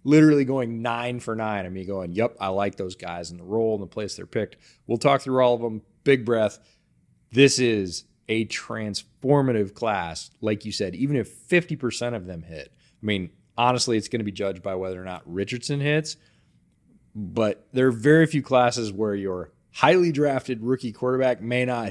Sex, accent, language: male, American, English